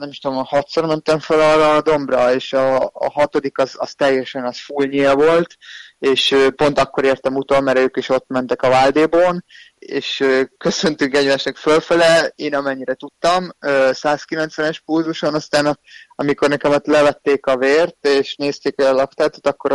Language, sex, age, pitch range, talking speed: Hungarian, male, 20-39, 130-150 Hz, 165 wpm